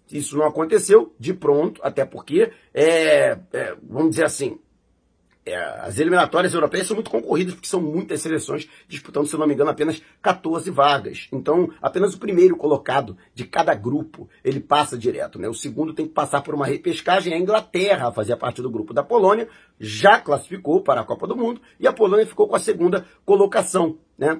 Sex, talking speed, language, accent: male, 185 wpm, Portuguese, Brazilian